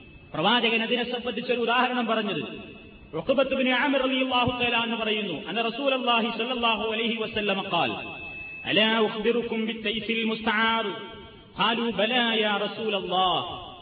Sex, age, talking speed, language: male, 30-49, 135 wpm, Malayalam